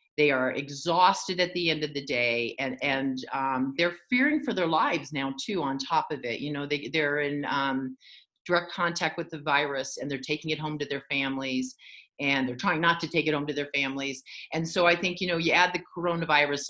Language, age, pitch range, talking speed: English, 40-59, 140-180 Hz, 225 wpm